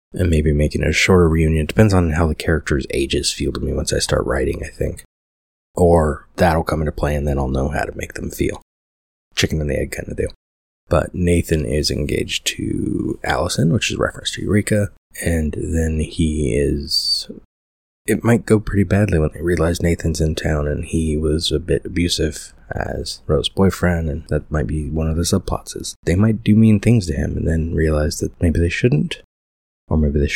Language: English